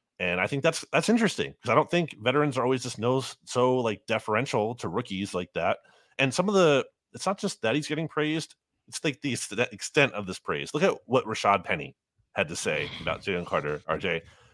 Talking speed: 220 wpm